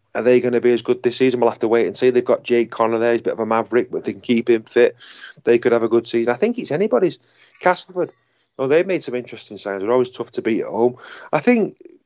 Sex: male